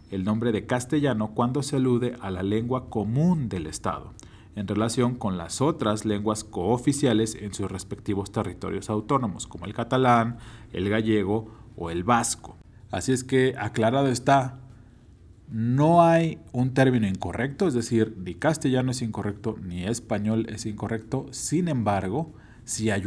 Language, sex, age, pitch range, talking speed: Spanish, male, 40-59, 100-130 Hz, 150 wpm